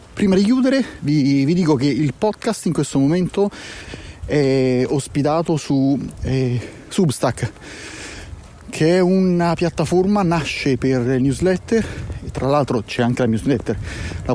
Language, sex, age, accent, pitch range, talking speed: Italian, male, 30-49, native, 125-170 Hz, 135 wpm